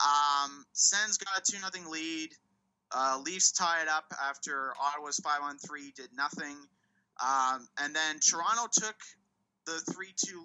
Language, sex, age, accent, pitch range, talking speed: English, male, 30-49, American, 145-190 Hz, 145 wpm